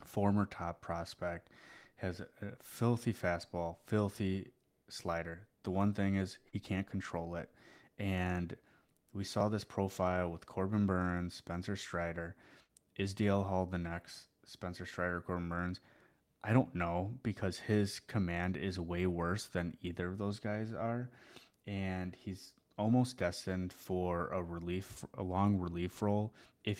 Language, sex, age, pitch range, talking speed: English, male, 20-39, 90-105 Hz, 140 wpm